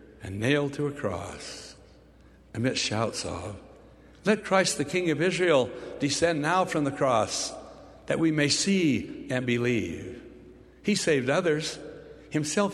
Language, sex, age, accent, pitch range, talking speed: English, male, 60-79, American, 115-155 Hz, 135 wpm